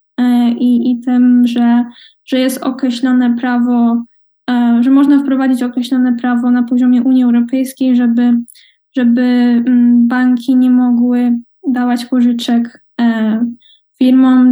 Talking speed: 105 wpm